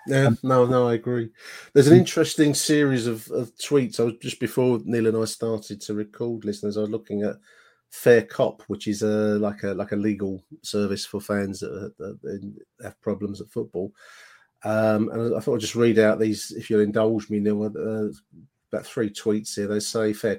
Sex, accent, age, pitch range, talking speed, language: male, British, 40-59, 100-110 Hz, 205 wpm, English